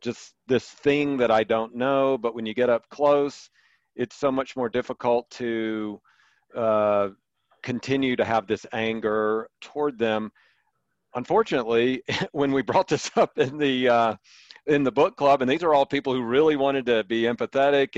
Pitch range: 120-140 Hz